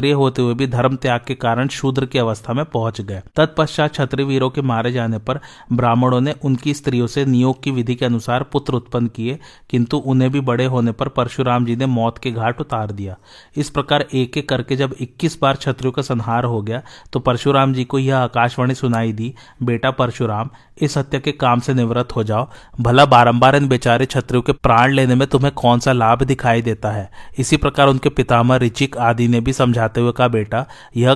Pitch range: 120-135 Hz